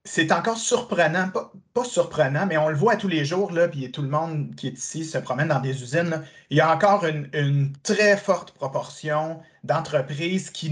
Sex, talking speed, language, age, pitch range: male, 215 wpm, French, 30-49, 145-190 Hz